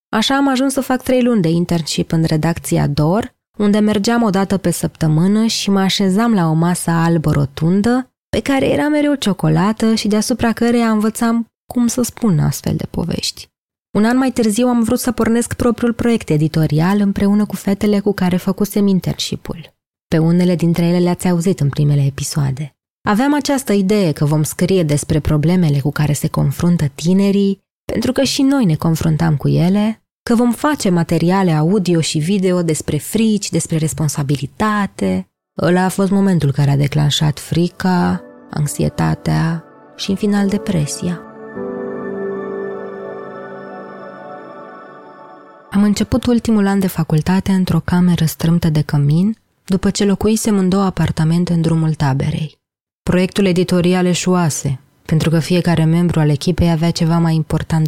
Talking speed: 150 wpm